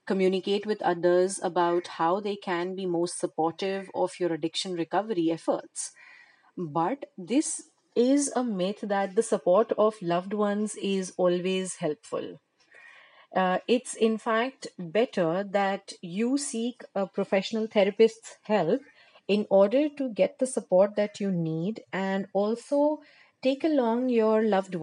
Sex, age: female, 30-49